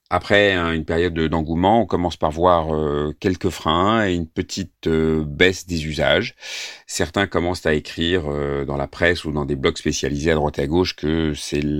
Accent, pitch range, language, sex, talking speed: French, 75-90 Hz, French, male, 200 wpm